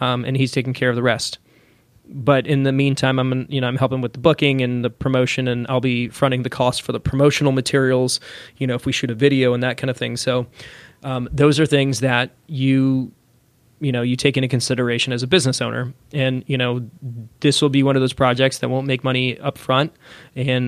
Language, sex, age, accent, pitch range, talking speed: English, male, 20-39, American, 125-135 Hz, 230 wpm